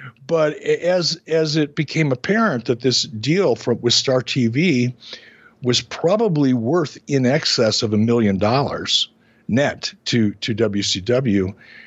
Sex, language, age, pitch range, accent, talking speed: male, English, 60-79, 110-135 Hz, American, 120 wpm